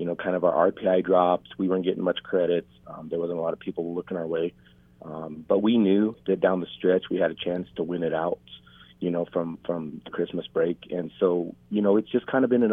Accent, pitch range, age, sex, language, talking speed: American, 85-100 Hz, 30-49, male, English, 260 wpm